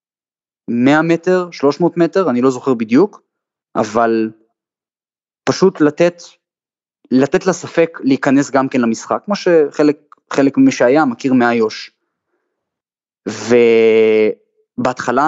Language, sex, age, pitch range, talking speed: Hebrew, male, 20-39, 115-165 Hz, 95 wpm